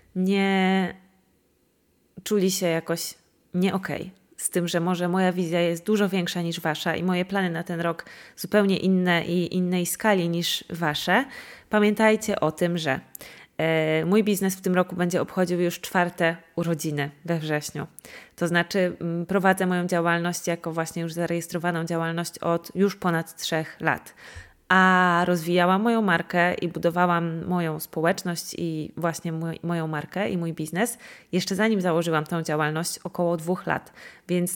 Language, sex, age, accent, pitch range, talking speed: Polish, female, 20-39, native, 165-190 Hz, 150 wpm